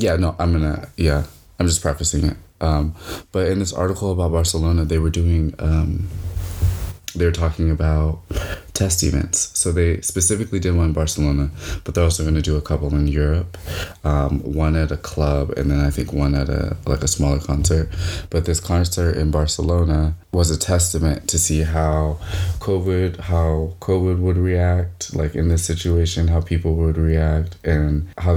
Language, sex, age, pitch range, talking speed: English, male, 20-39, 80-90 Hz, 180 wpm